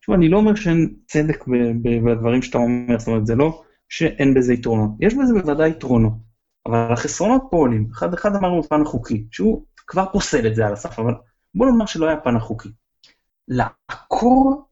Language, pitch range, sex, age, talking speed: Hebrew, 120-195 Hz, male, 30-49, 180 wpm